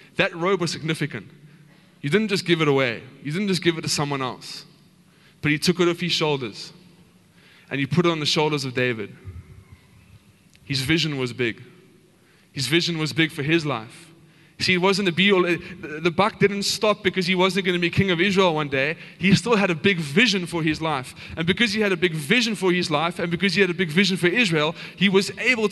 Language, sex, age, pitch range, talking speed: English, male, 20-39, 145-185 Hz, 225 wpm